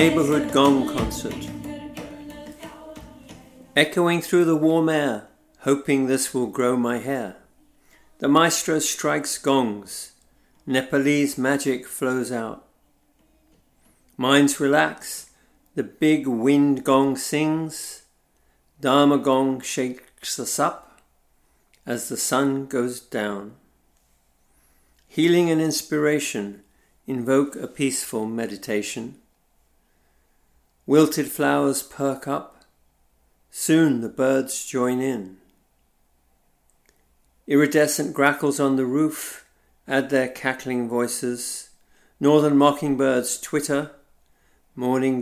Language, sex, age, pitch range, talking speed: English, male, 50-69, 100-145 Hz, 90 wpm